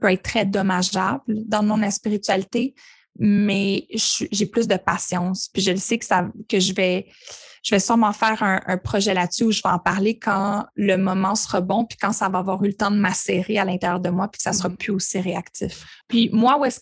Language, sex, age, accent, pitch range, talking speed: French, female, 20-39, Canadian, 195-235 Hz, 230 wpm